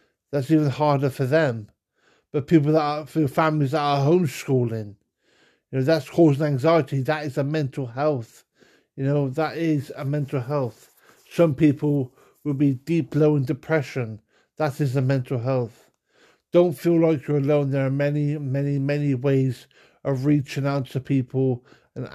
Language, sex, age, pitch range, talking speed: English, male, 50-69, 130-150 Hz, 165 wpm